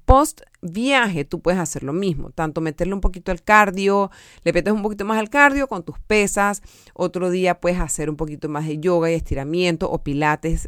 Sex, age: female, 30-49